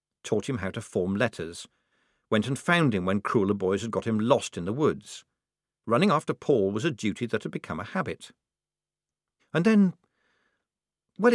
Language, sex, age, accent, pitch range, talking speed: English, male, 50-69, British, 105-145 Hz, 180 wpm